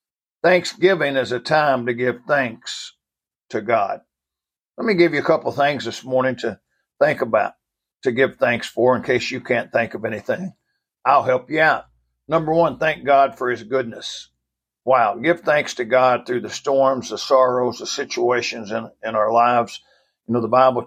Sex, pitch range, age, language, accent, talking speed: male, 125-145 Hz, 60-79, English, American, 180 wpm